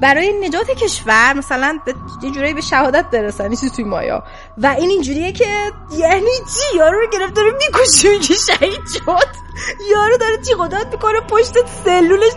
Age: 20-39